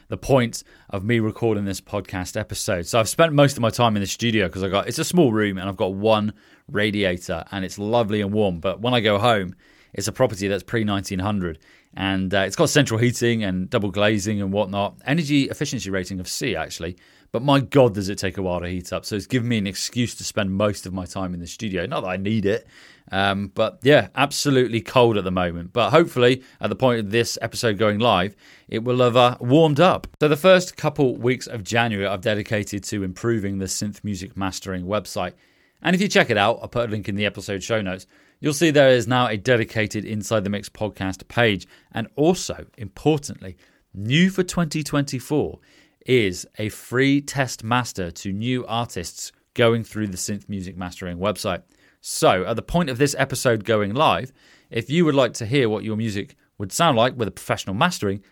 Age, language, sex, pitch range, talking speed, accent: 30-49, English, male, 100-125 Hz, 215 wpm, British